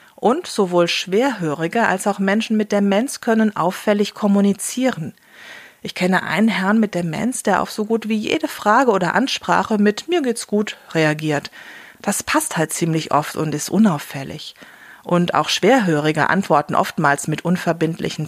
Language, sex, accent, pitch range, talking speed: German, female, German, 155-215 Hz, 150 wpm